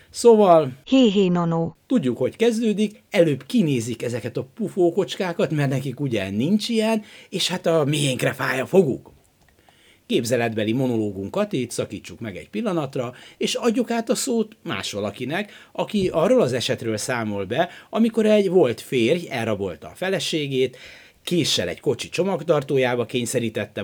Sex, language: male, Hungarian